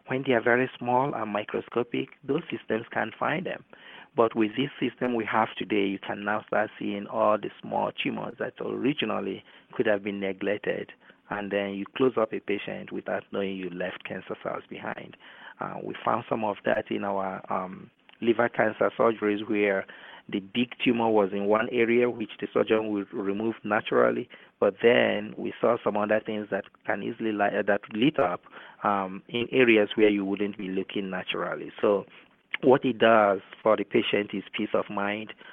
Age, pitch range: 30-49, 100-110 Hz